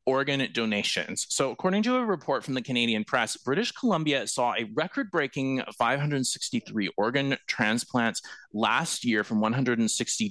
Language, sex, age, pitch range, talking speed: English, male, 30-49, 115-160 Hz, 140 wpm